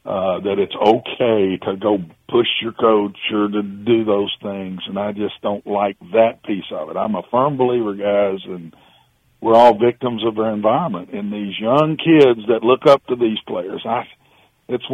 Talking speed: 190 wpm